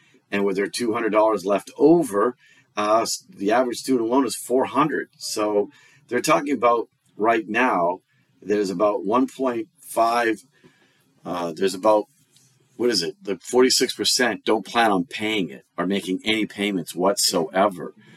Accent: American